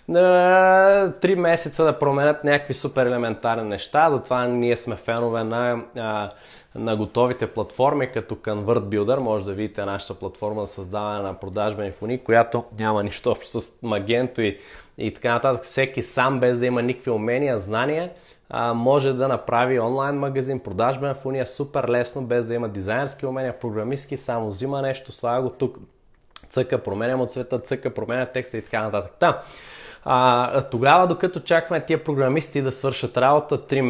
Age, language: 20-39, Bulgarian